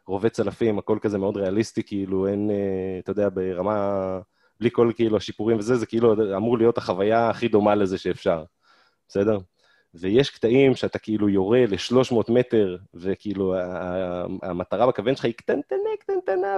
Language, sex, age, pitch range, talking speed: Hebrew, male, 20-39, 95-130 Hz, 145 wpm